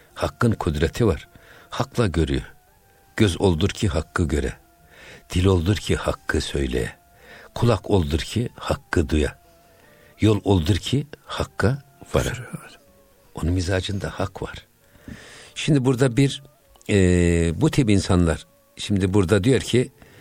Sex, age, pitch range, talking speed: male, 60-79, 90-115 Hz, 120 wpm